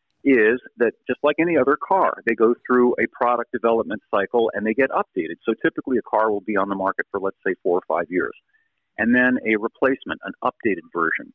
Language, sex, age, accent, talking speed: English, male, 40-59, American, 215 wpm